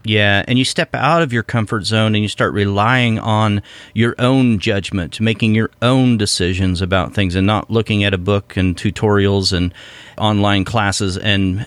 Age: 40-59